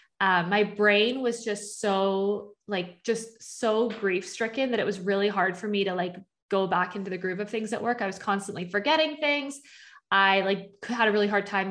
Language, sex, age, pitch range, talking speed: English, female, 20-39, 190-220 Hz, 210 wpm